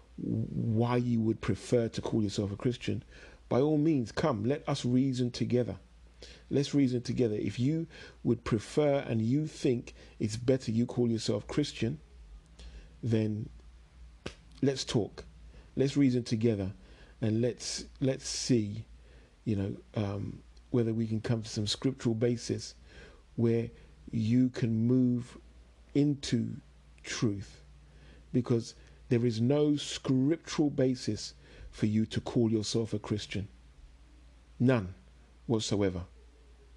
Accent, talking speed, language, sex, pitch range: British, 120 wpm, English, male, 95-125 Hz